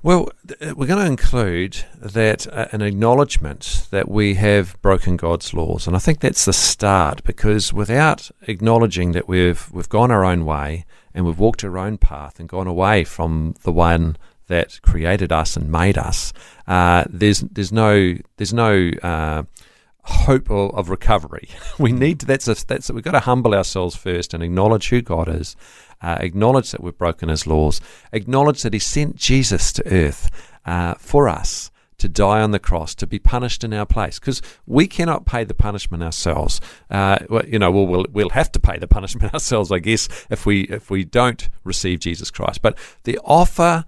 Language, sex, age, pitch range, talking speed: English, male, 50-69, 85-115 Hz, 190 wpm